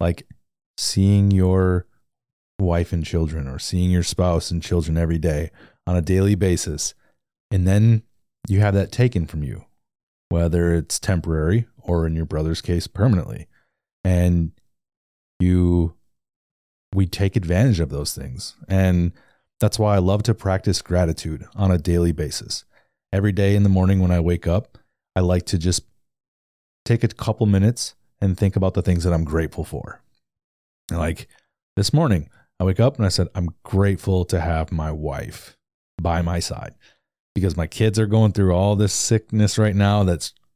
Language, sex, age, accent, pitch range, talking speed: English, male, 30-49, American, 85-105 Hz, 165 wpm